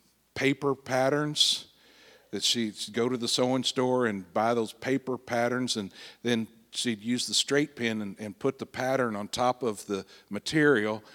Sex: male